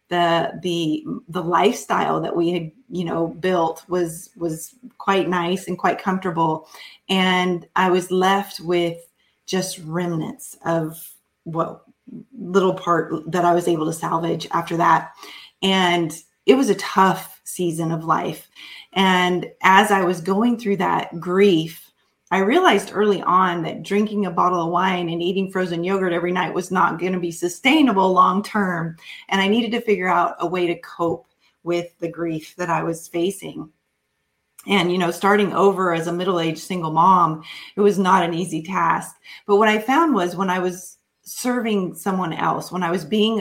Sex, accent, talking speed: female, American, 175 wpm